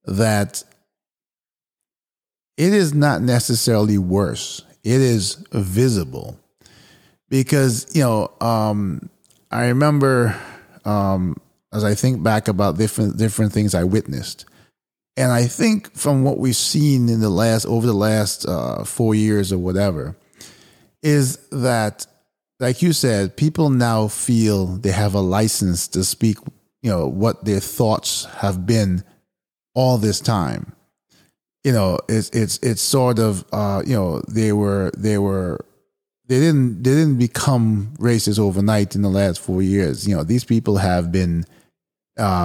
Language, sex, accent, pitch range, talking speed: English, male, American, 100-125 Hz, 145 wpm